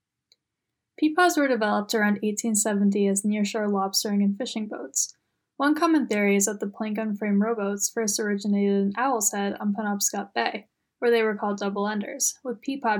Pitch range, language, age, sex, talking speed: 205-240 Hz, English, 10-29, female, 160 wpm